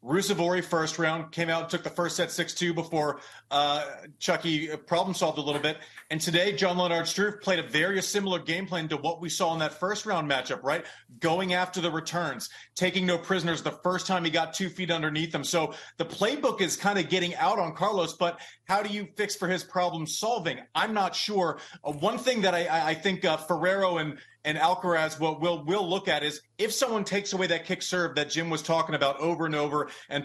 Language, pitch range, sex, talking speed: English, 160-185 Hz, male, 220 wpm